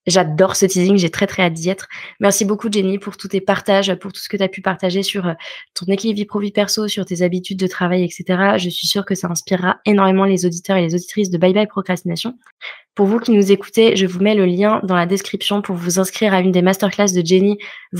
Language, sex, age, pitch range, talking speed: French, female, 20-39, 175-205 Hz, 255 wpm